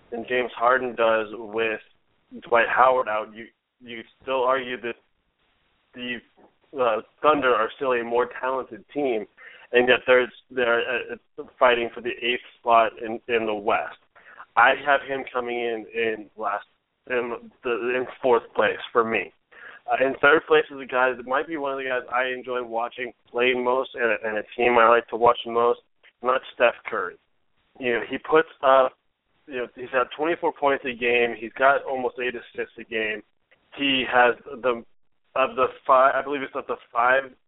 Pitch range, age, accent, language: 115-130 Hz, 20-39, American, English